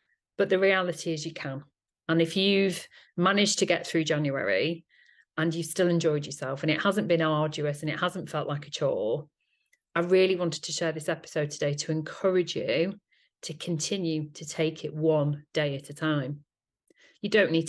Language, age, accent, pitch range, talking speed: English, 40-59, British, 155-190 Hz, 185 wpm